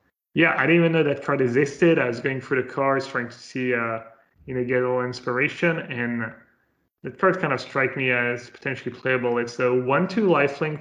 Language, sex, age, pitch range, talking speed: English, male, 30-49, 125-150 Hz, 200 wpm